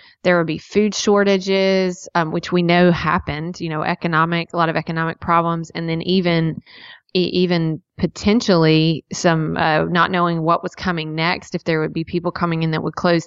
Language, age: English, 30-49